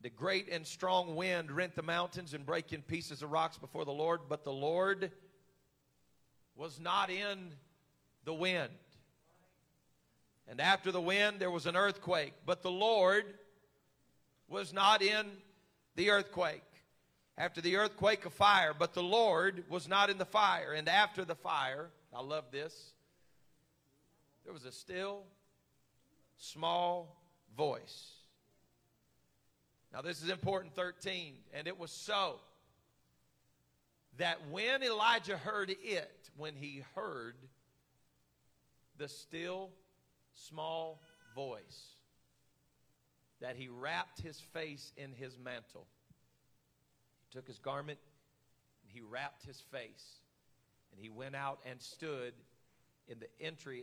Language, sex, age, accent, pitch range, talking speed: English, male, 40-59, American, 125-185 Hz, 125 wpm